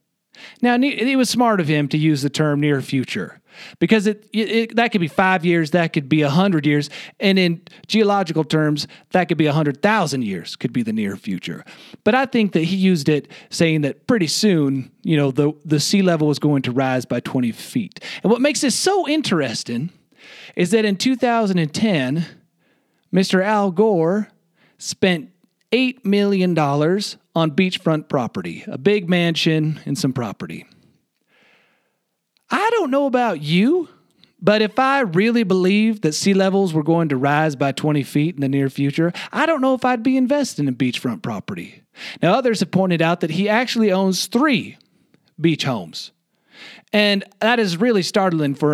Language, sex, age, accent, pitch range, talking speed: English, male, 40-59, American, 155-215 Hz, 170 wpm